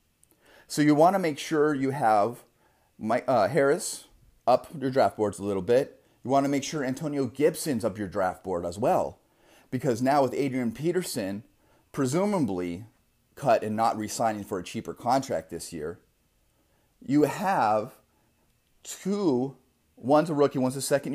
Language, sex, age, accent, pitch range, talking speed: English, male, 30-49, American, 110-140 Hz, 155 wpm